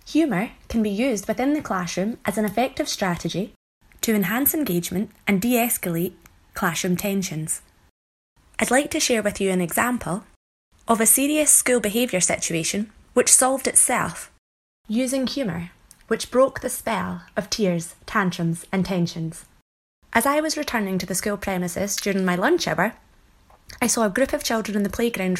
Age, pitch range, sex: 20-39, 185-230 Hz, female